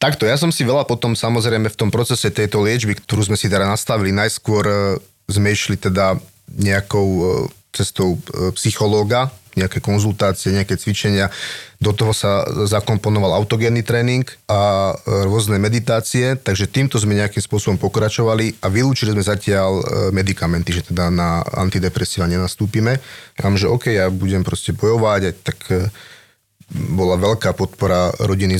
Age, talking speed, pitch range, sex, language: 30-49, 140 wpm, 95-115 Hz, male, Slovak